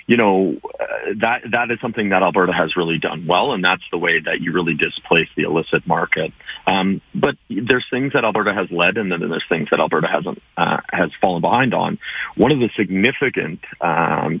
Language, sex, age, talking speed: English, male, 30-49, 205 wpm